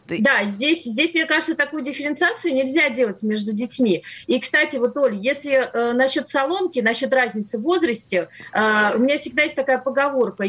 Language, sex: Russian, female